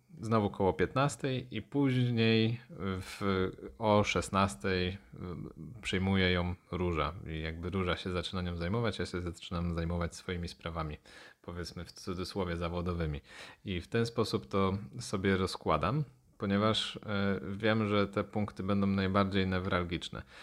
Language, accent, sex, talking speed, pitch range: Polish, native, male, 125 wpm, 90-105 Hz